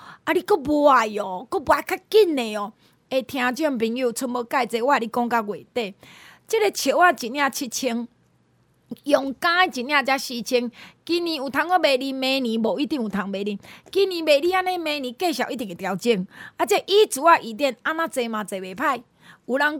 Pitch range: 230-310 Hz